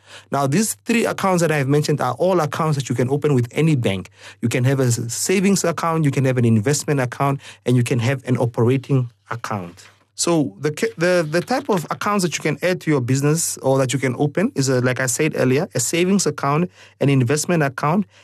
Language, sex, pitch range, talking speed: English, male, 125-160 Hz, 220 wpm